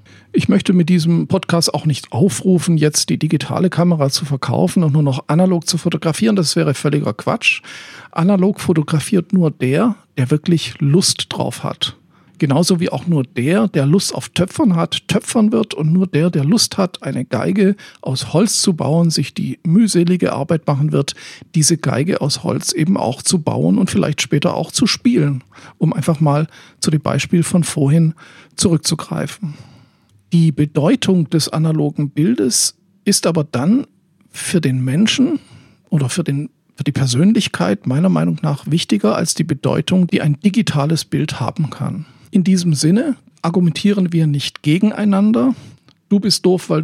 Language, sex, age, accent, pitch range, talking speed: German, male, 50-69, German, 145-190 Hz, 160 wpm